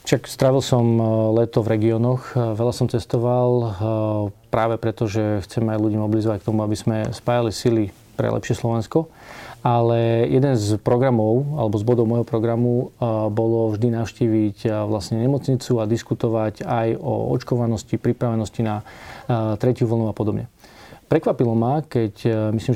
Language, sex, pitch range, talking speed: Slovak, male, 110-125 Hz, 140 wpm